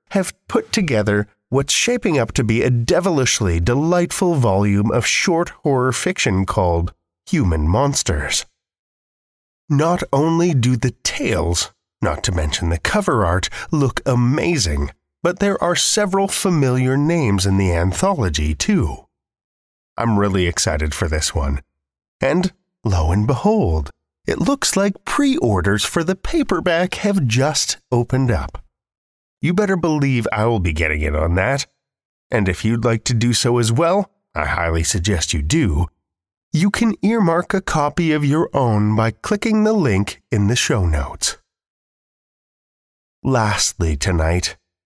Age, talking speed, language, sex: 30-49, 140 wpm, English, male